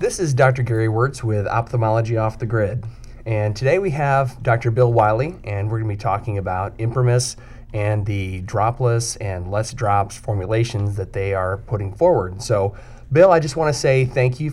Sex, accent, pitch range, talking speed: male, American, 105-125 Hz, 180 wpm